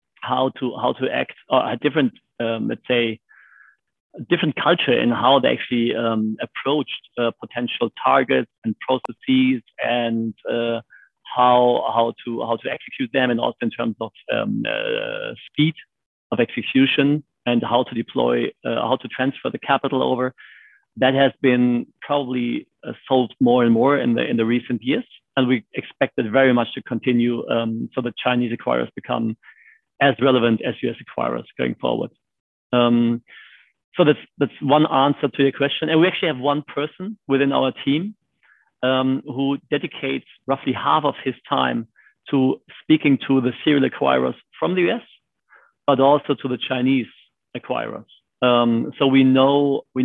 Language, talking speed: English, 165 wpm